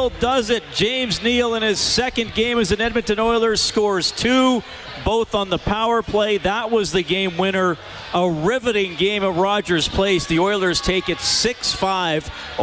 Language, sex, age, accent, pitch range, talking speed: English, male, 40-59, American, 150-185 Hz, 165 wpm